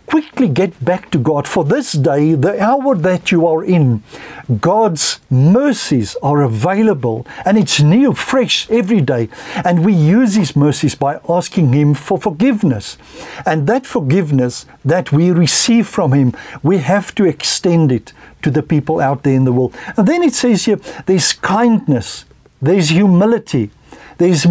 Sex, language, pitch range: male, English, 145-205 Hz